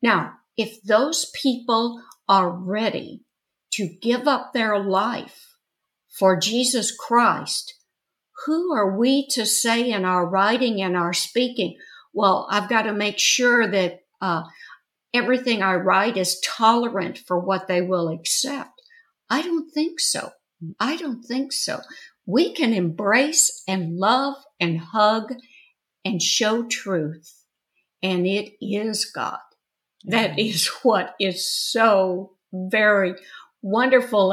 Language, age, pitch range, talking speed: English, 60-79, 185-245 Hz, 125 wpm